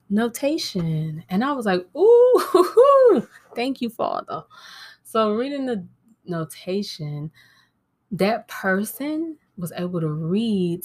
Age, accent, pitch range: 20-39, American, 160-230 Hz